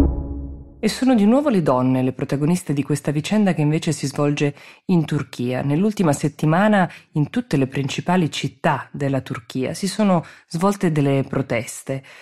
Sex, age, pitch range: female, 20-39, 140-195 Hz